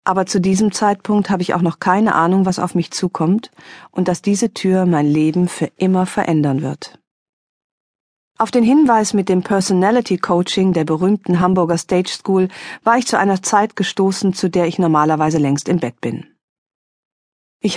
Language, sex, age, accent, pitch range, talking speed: German, female, 40-59, German, 165-205 Hz, 170 wpm